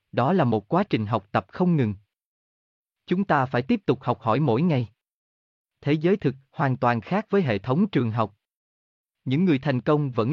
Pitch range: 110-165 Hz